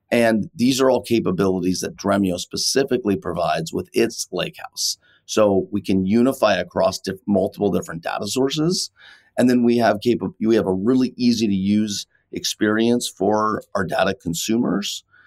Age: 30-49